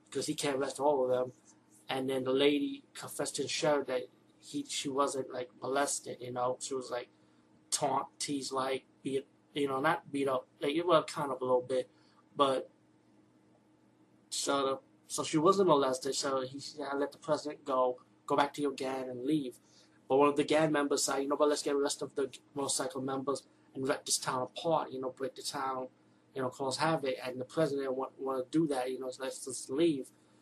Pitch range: 130-145 Hz